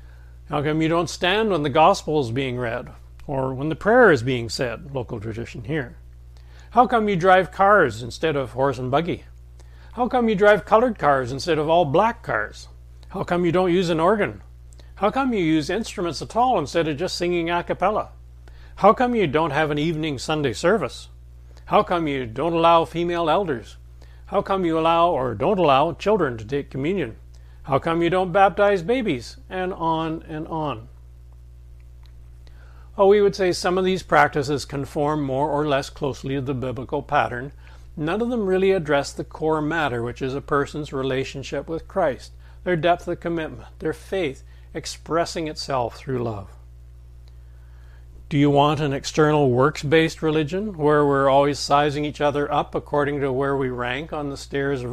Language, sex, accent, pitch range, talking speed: English, male, American, 100-170 Hz, 180 wpm